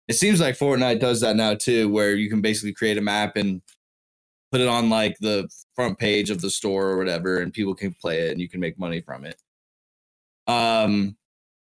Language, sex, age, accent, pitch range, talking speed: English, male, 20-39, American, 105-135 Hz, 210 wpm